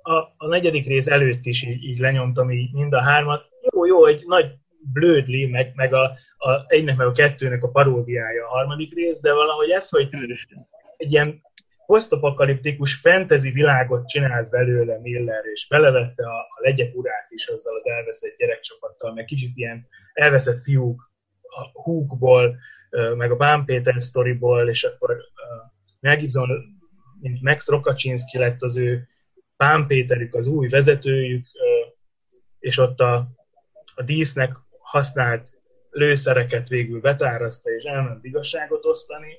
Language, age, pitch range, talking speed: Hungarian, 20-39, 125-155 Hz, 140 wpm